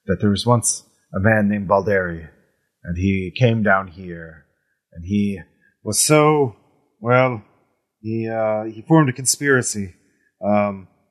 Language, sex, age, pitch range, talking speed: English, male, 30-49, 110-150 Hz, 135 wpm